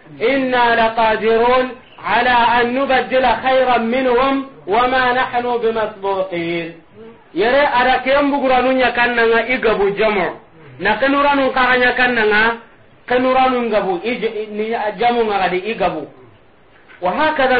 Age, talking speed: 40-59, 80 wpm